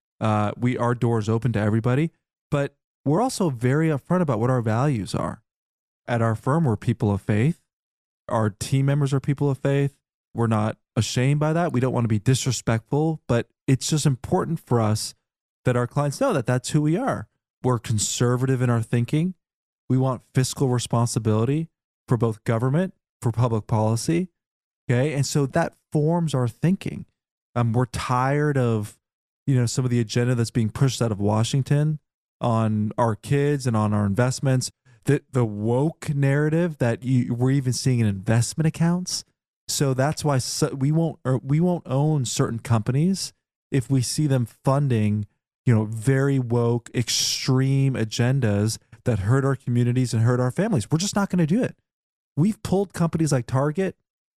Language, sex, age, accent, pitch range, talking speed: English, male, 20-39, American, 115-145 Hz, 175 wpm